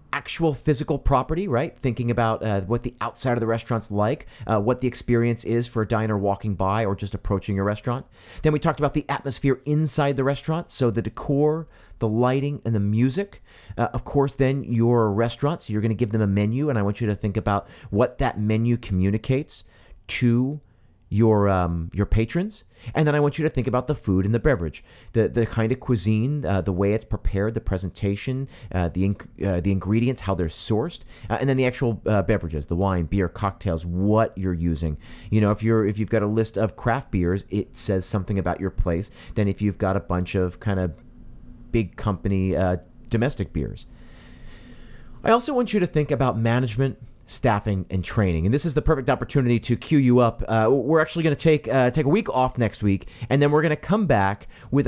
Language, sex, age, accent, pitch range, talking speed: English, male, 40-59, American, 100-135 Hz, 215 wpm